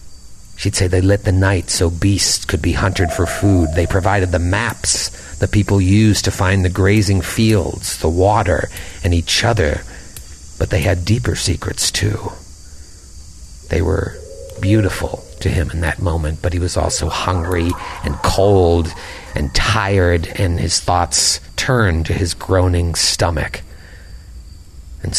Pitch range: 80-100 Hz